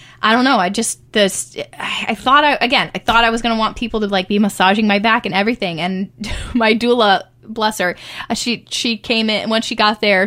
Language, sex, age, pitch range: English, female, 20-39, 185-225 Hz